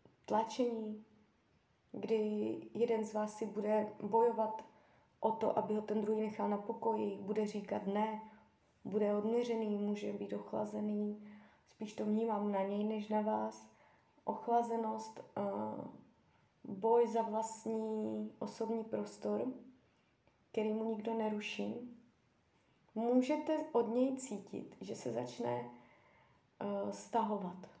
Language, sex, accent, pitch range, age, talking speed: Czech, female, native, 205-230 Hz, 20-39, 110 wpm